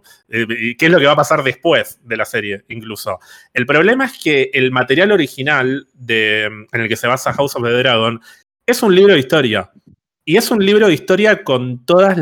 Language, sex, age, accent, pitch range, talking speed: Spanish, male, 20-39, Argentinian, 115-145 Hz, 200 wpm